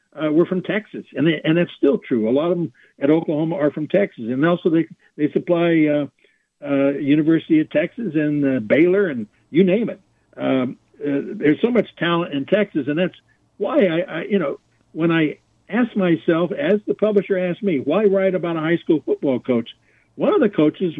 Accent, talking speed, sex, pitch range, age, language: American, 205 wpm, male, 150-195 Hz, 60-79, English